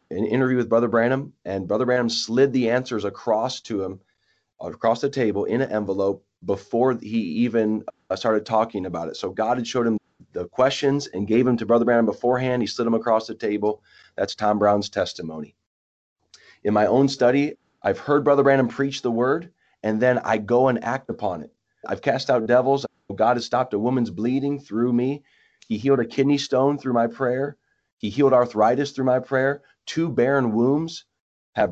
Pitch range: 110-135 Hz